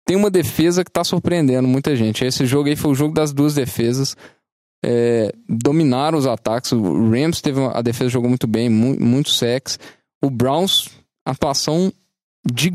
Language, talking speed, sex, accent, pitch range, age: Portuguese, 175 wpm, male, Brazilian, 125-150 Hz, 10-29